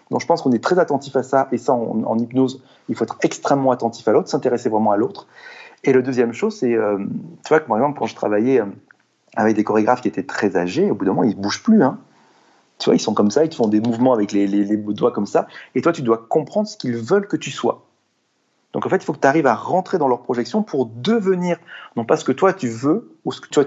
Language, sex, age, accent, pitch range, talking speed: French, male, 40-59, French, 115-155 Hz, 275 wpm